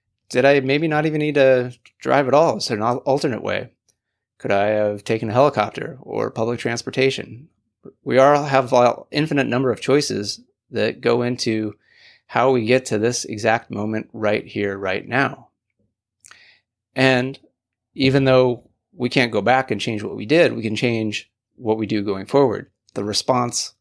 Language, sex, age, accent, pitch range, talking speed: English, male, 30-49, American, 105-125 Hz, 170 wpm